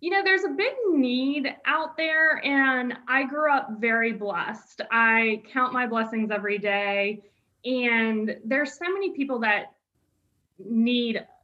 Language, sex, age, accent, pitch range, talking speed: English, female, 20-39, American, 215-255 Hz, 140 wpm